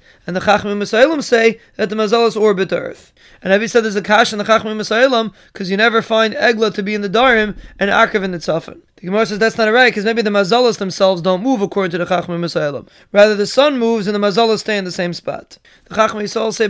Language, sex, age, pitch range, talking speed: English, male, 20-39, 195-225 Hz, 250 wpm